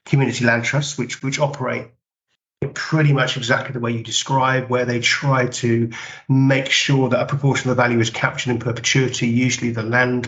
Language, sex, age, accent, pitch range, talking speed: English, male, 40-59, British, 120-140 Hz, 185 wpm